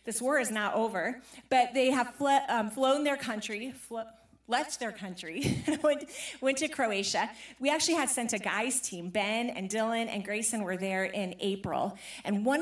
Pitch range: 200-265 Hz